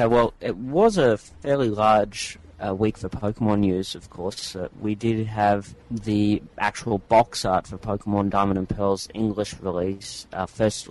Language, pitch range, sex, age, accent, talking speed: English, 95-110 Hz, male, 30-49, Australian, 165 wpm